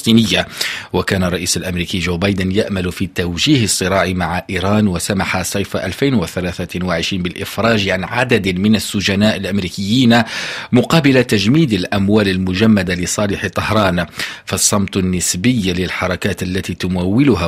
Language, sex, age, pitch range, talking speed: Arabic, male, 50-69, 95-115 Hz, 105 wpm